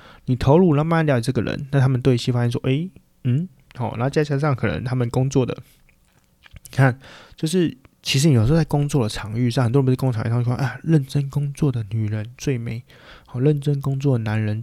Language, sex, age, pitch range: Chinese, male, 20-39, 120-150 Hz